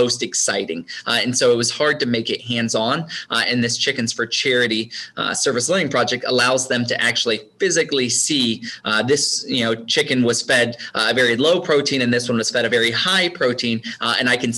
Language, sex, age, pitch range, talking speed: English, male, 20-39, 115-130 Hz, 220 wpm